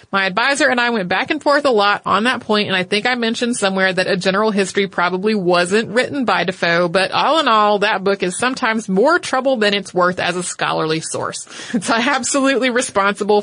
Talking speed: 215 wpm